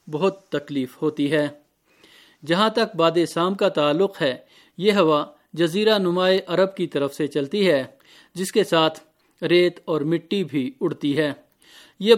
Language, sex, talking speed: Urdu, male, 155 wpm